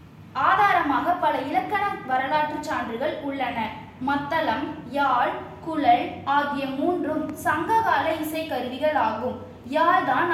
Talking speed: 85 wpm